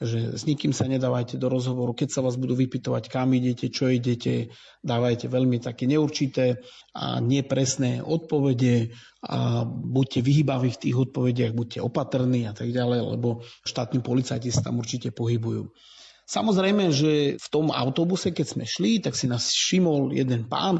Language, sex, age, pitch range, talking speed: Slovak, male, 40-59, 125-155 Hz, 160 wpm